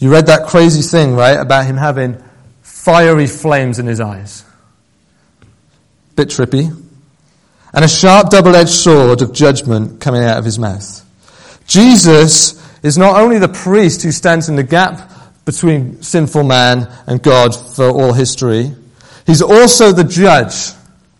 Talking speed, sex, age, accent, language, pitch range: 145 wpm, male, 40-59, British, English, 130-185 Hz